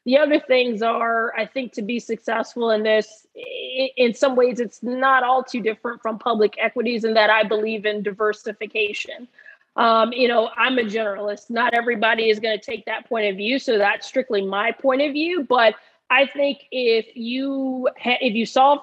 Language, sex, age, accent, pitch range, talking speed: English, female, 30-49, American, 215-245 Hz, 190 wpm